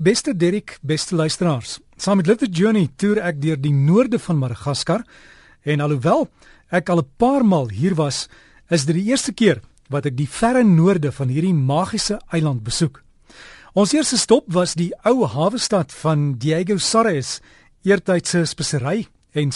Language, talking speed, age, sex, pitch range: Indonesian, 160 wpm, 40-59, male, 150-205 Hz